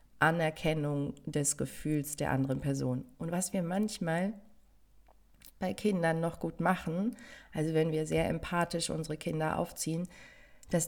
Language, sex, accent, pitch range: German, female, German, 145-170 Hz